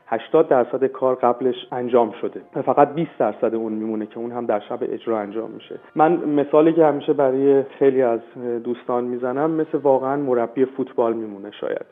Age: 40-59